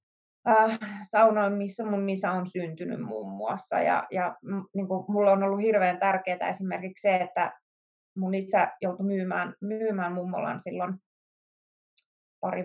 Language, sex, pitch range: Finnish, female, 190-240 Hz